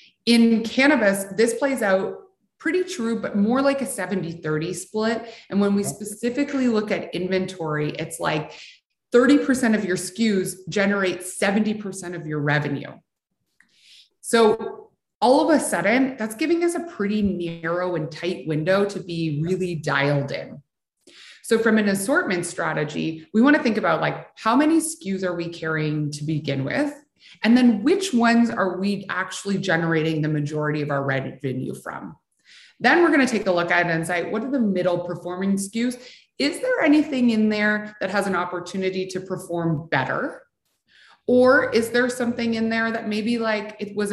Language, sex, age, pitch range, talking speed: English, female, 30-49, 175-235 Hz, 170 wpm